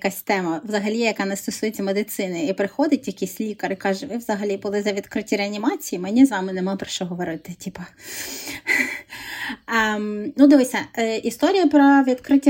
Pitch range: 205-280 Hz